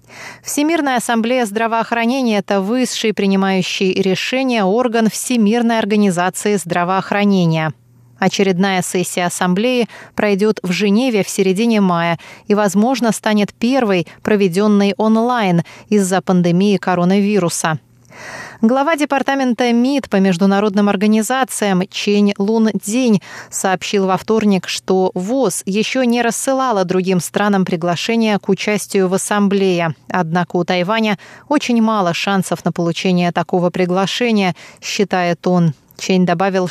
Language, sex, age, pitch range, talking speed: Russian, female, 20-39, 180-220 Hz, 110 wpm